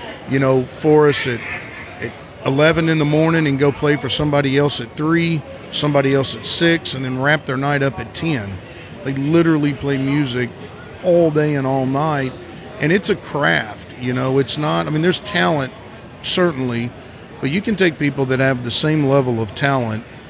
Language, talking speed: English, 190 wpm